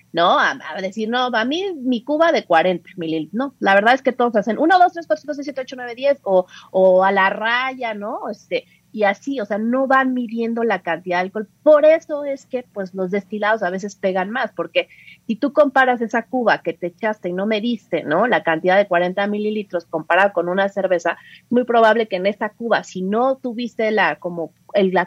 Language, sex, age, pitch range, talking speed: Spanish, female, 30-49, 180-230 Hz, 225 wpm